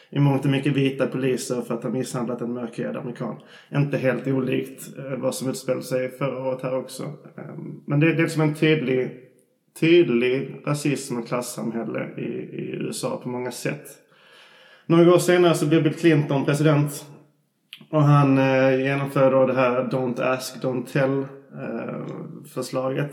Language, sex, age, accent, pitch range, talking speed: Swedish, male, 20-39, native, 125-145 Hz, 160 wpm